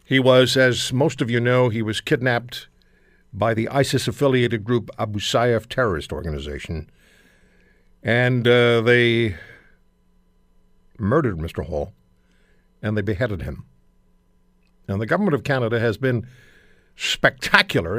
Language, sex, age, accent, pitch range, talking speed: English, male, 60-79, American, 90-125 Hz, 120 wpm